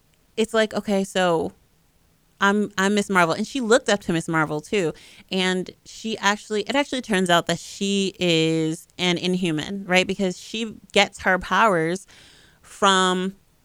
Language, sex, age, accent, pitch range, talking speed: English, female, 30-49, American, 165-200 Hz, 155 wpm